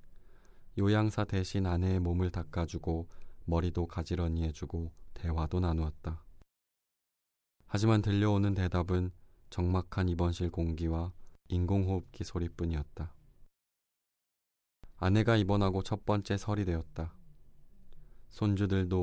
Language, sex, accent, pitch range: Korean, male, native, 80-95 Hz